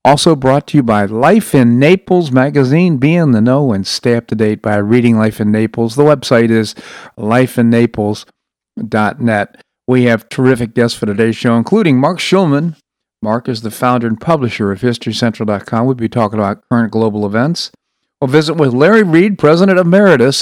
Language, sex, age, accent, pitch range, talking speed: English, male, 50-69, American, 115-150 Hz, 175 wpm